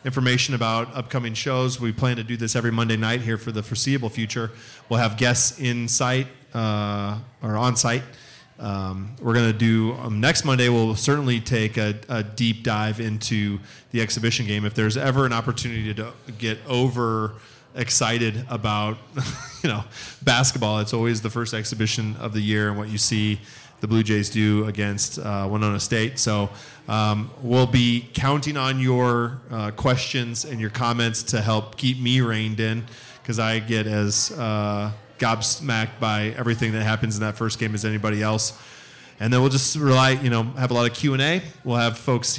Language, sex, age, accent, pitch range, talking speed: English, male, 30-49, American, 110-125 Hz, 180 wpm